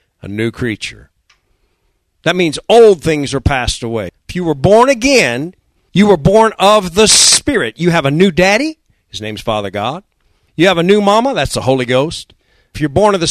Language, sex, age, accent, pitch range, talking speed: English, male, 50-69, American, 120-200 Hz, 200 wpm